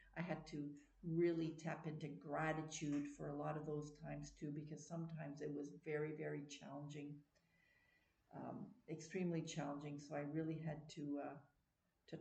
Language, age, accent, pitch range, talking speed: English, 50-69, American, 145-175 Hz, 150 wpm